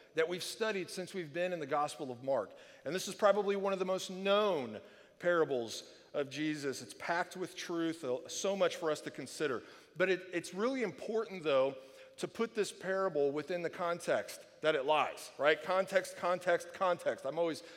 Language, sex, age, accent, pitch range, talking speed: English, male, 40-59, American, 165-200 Hz, 180 wpm